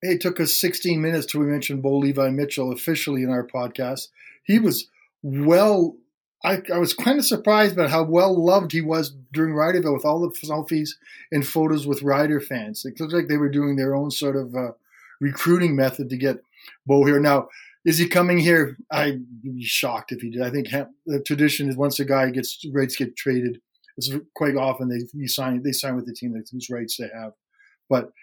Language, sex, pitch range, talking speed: English, male, 135-170 Hz, 205 wpm